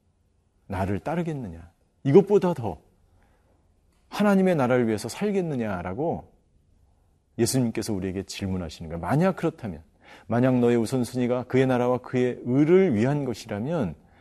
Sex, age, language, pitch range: male, 40-59, Korean, 90-125 Hz